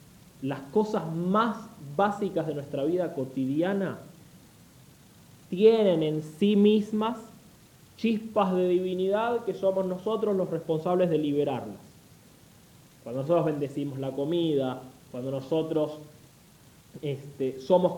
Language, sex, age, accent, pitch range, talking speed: English, male, 20-39, Argentinian, 140-180 Hz, 100 wpm